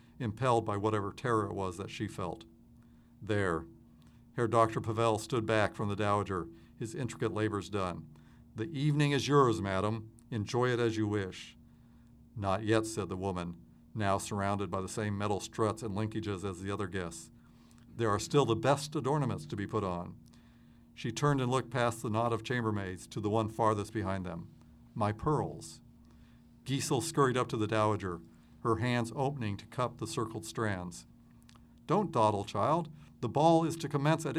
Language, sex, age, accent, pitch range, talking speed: English, male, 50-69, American, 100-120 Hz, 175 wpm